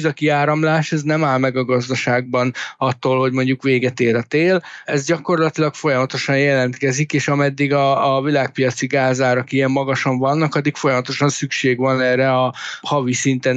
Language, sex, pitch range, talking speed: Hungarian, male, 125-145 Hz, 160 wpm